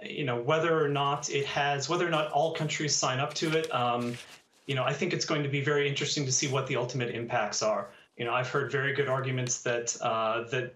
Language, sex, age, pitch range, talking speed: English, male, 30-49, 125-150 Hz, 245 wpm